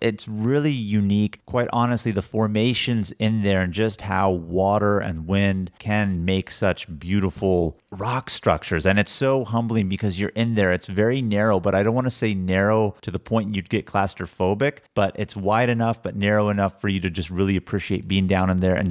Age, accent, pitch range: 30-49, American, 90-105 Hz